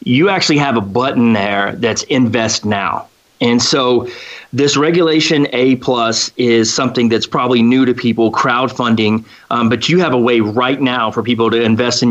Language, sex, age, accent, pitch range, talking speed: English, male, 30-49, American, 115-135 Hz, 180 wpm